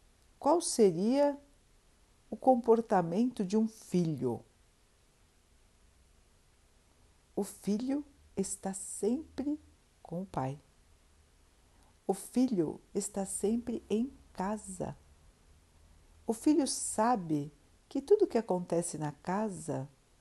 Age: 60-79